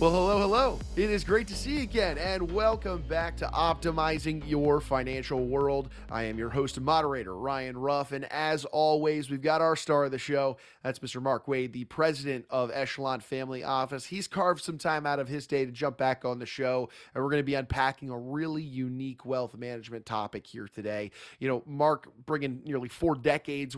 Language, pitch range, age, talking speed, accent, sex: English, 130-160 Hz, 30-49, 205 wpm, American, male